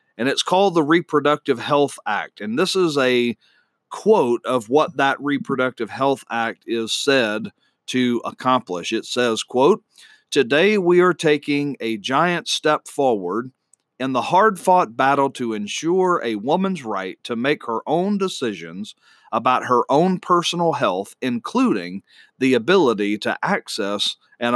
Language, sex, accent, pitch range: English, male, American, 115-150 Hz